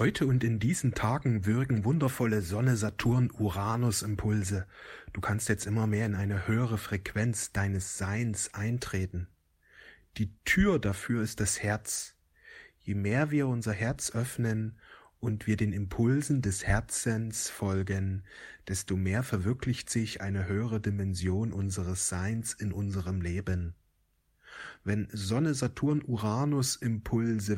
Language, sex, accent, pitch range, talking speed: German, male, German, 100-120 Hz, 115 wpm